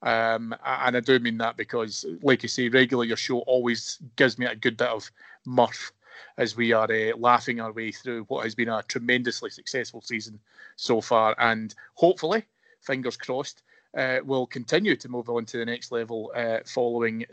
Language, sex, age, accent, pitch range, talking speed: English, male, 30-49, British, 120-135 Hz, 185 wpm